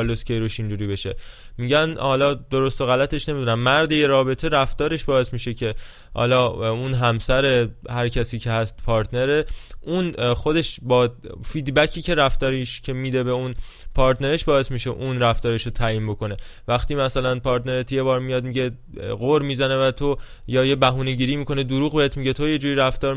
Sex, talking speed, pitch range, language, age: male, 165 wpm, 120-145 Hz, Persian, 20-39